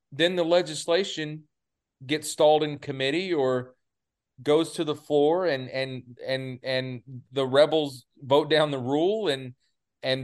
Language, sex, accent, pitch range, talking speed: English, male, American, 115-145 Hz, 140 wpm